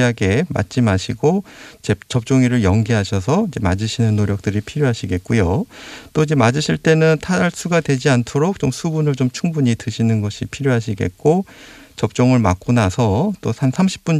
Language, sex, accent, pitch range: Korean, male, native, 110-140 Hz